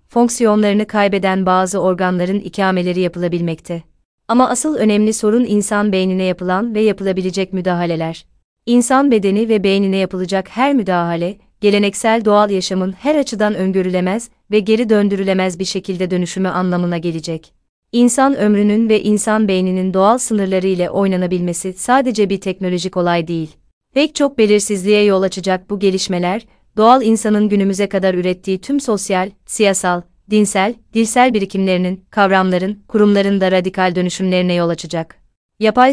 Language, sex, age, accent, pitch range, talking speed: Turkish, female, 30-49, native, 185-215 Hz, 130 wpm